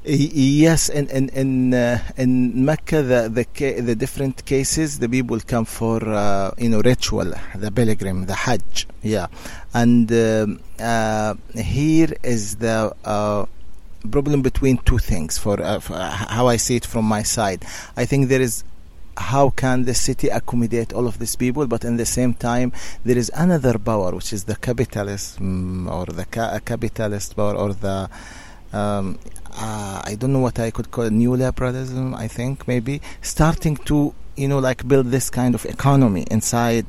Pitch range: 105-130 Hz